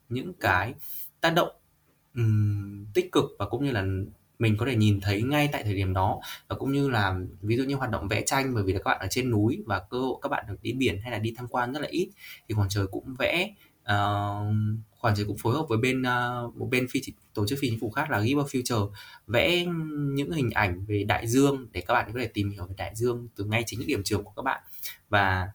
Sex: male